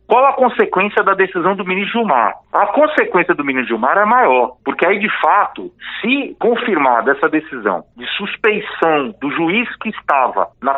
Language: Portuguese